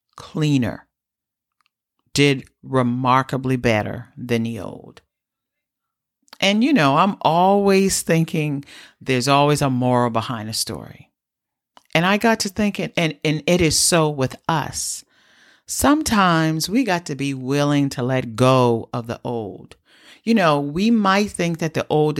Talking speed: 140 wpm